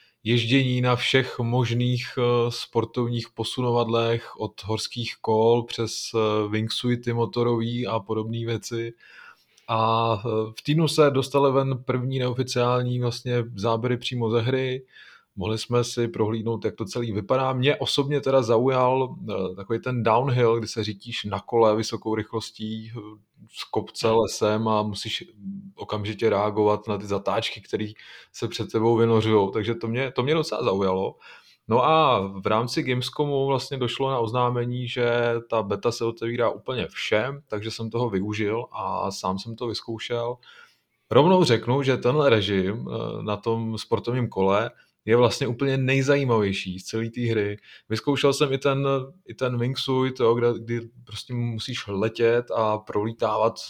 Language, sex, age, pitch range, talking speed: Czech, male, 20-39, 110-125 Hz, 145 wpm